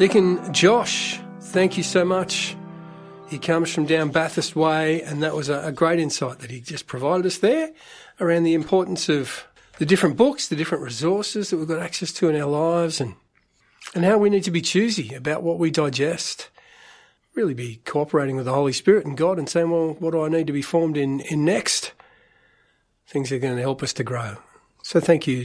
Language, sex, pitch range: English, male, 145-180 Hz